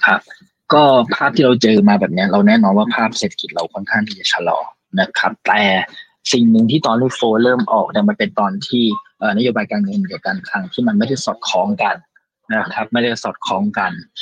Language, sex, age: Thai, male, 20-39